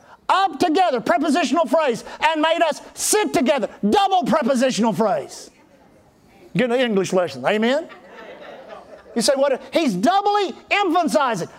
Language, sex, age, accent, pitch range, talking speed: English, male, 50-69, American, 215-320 Hz, 120 wpm